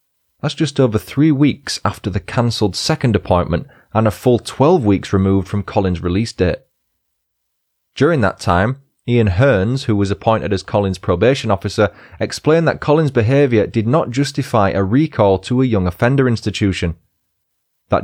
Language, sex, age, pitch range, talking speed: English, male, 30-49, 95-120 Hz, 155 wpm